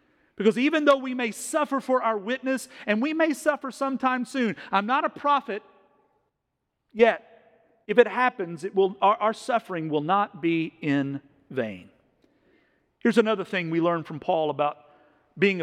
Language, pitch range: English, 175-230 Hz